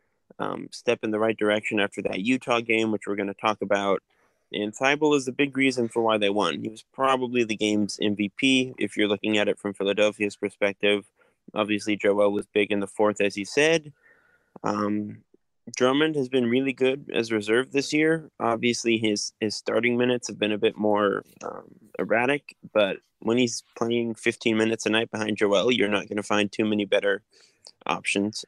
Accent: American